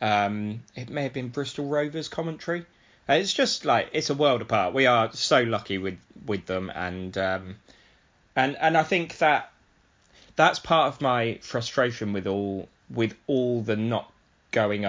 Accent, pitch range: British, 100-125 Hz